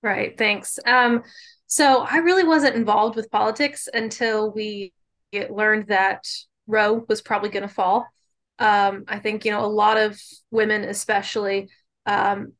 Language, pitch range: English, 200-225 Hz